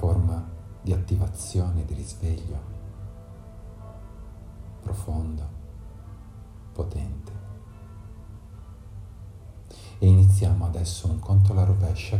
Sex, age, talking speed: male, 50-69, 70 wpm